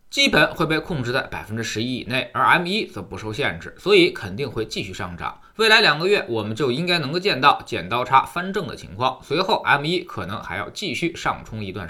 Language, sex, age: Chinese, male, 20-39